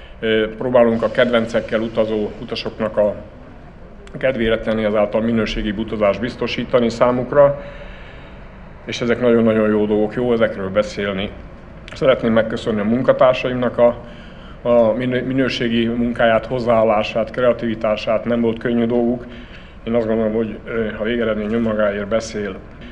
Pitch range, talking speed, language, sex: 105-120 Hz, 105 wpm, Hungarian, male